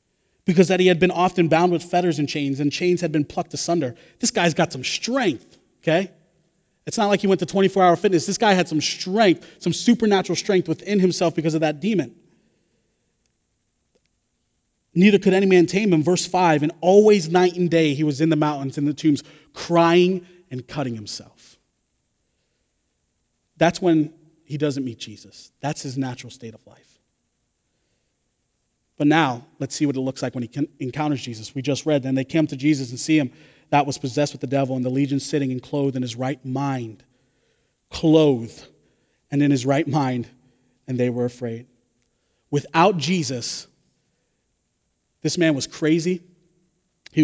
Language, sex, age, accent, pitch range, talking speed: English, male, 30-49, American, 130-175 Hz, 175 wpm